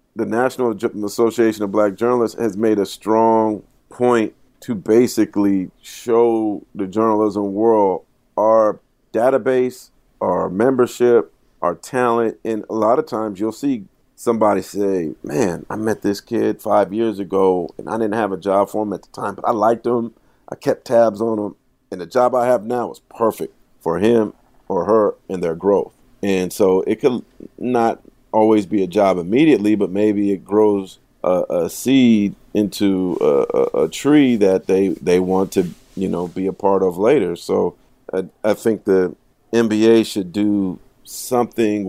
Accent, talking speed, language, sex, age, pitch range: American, 170 wpm, English, male, 40-59, 95-115 Hz